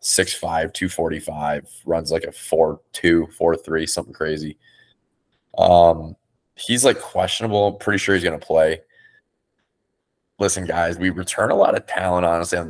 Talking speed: 140 wpm